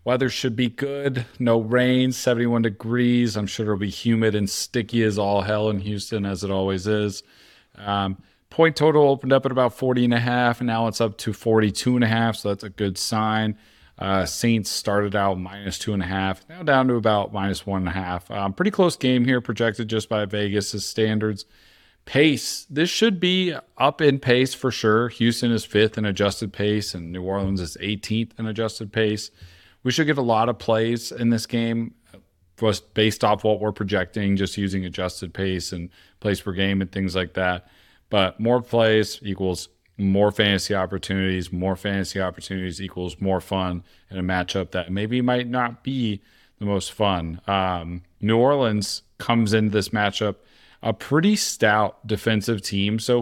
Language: English